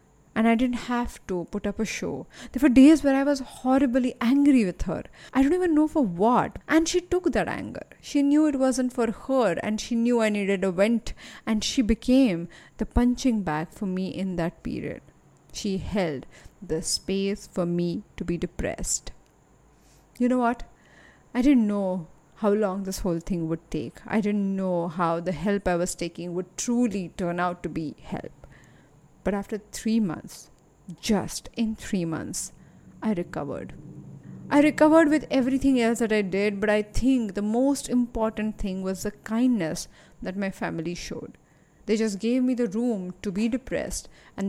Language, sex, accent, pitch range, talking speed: English, female, Indian, 185-250 Hz, 180 wpm